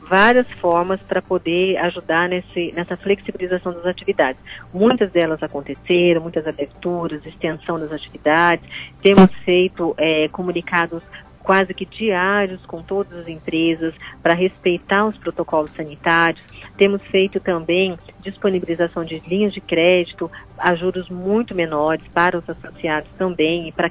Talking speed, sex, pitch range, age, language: 125 wpm, female, 165-195 Hz, 30-49, Portuguese